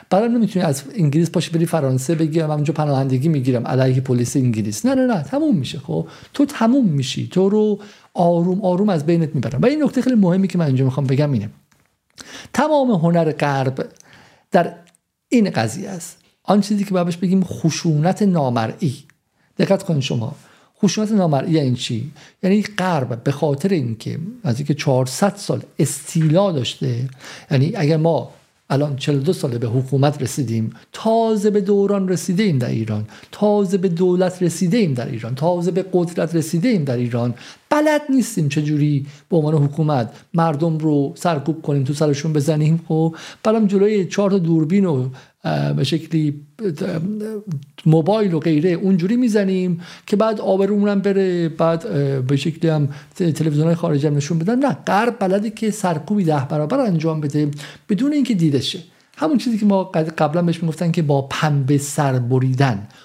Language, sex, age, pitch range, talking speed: Persian, male, 50-69, 145-195 Hz, 160 wpm